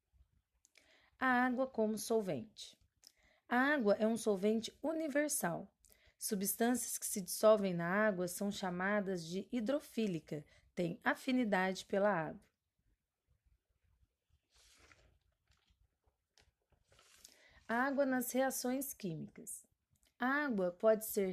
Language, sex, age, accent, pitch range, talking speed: Portuguese, female, 30-49, Brazilian, 180-235 Hz, 90 wpm